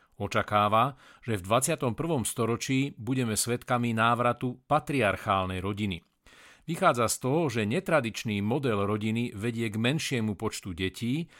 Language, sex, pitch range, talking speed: Slovak, male, 105-135 Hz, 115 wpm